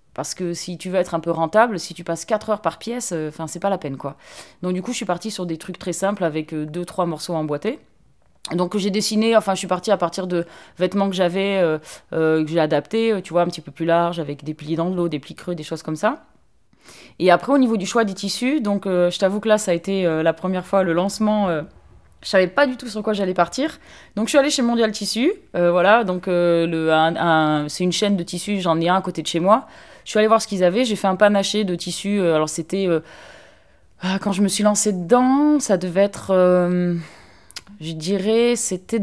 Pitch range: 170-210 Hz